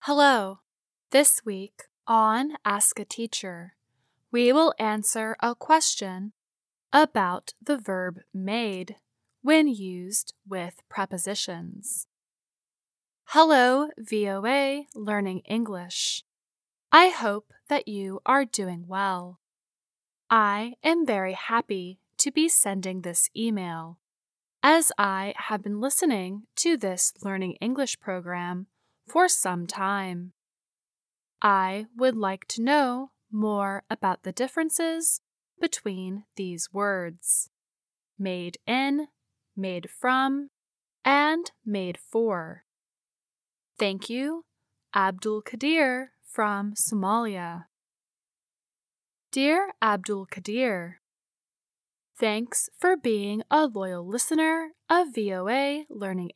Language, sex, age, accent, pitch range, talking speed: English, female, 10-29, American, 190-265 Hz, 95 wpm